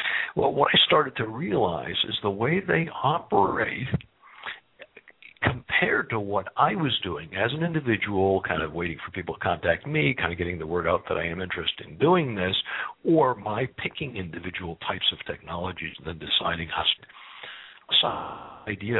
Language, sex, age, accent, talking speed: English, male, 60-79, American, 165 wpm